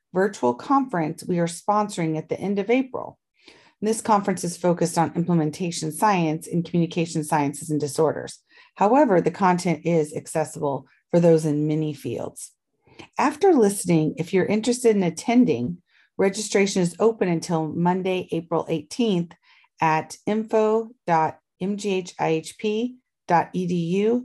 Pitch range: 165-215 Hz